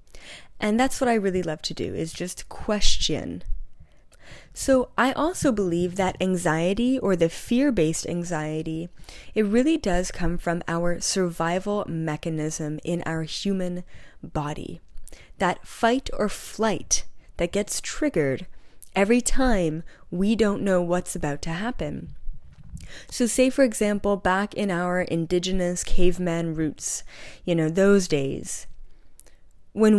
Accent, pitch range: American, 165-215 Hz